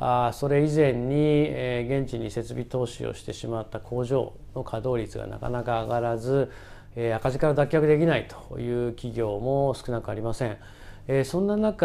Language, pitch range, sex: Japanese, 115-160 Hz, male